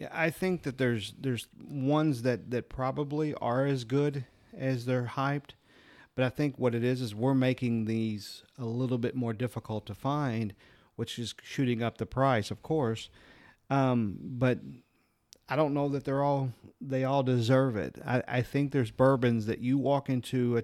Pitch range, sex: 115-135 Hz, male